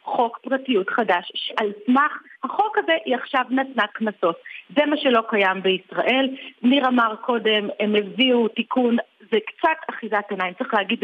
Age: 40-59